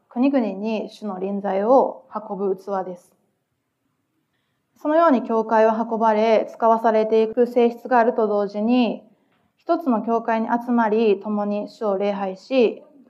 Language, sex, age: Japanese, female, 20-39